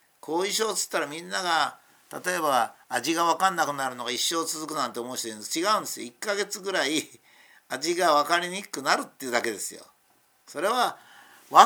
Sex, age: male, 50-69